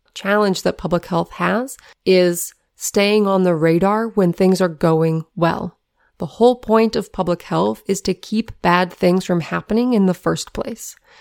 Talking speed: 170 wpm